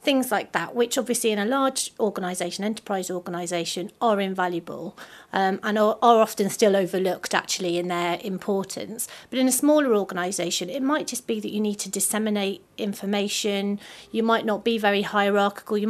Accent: British